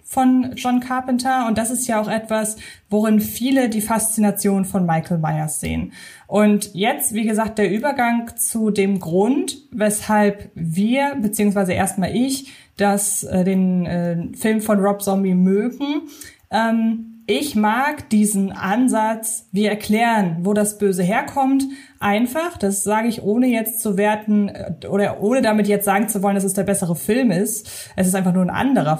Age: 20-39